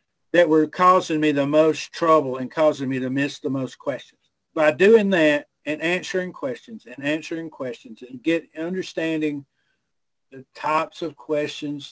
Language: English